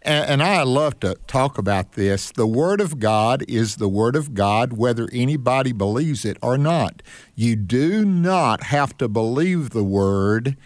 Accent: American